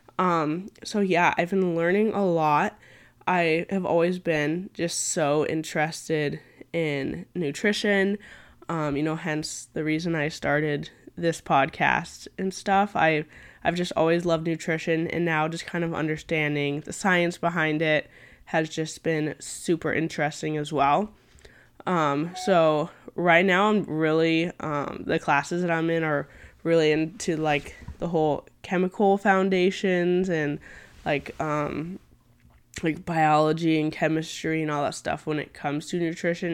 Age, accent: 10-29, American